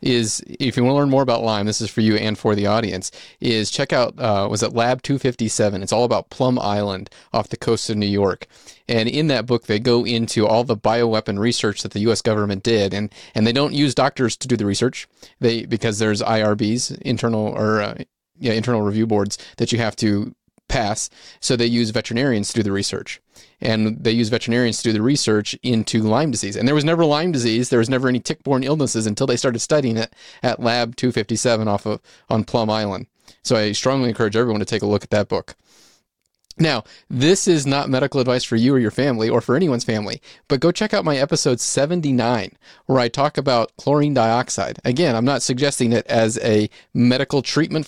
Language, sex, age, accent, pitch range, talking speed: English, male, 30-49, American, 110-130 Hz, 220 wpm